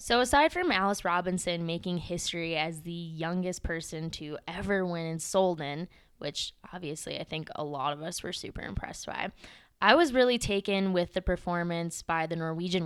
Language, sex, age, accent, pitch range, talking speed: English, female, 10-29, American, 175-210 Hz, 175 wpm